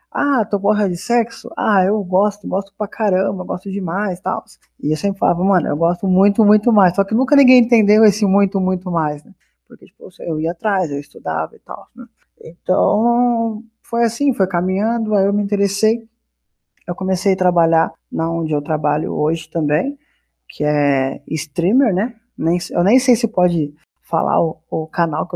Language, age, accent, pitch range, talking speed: Portuguese, 20-39, Brazilian, 170-215 Hz, 180 wpm